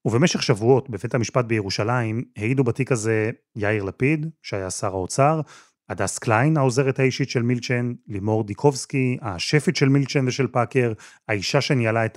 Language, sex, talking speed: Hebrew, male, 145 wpm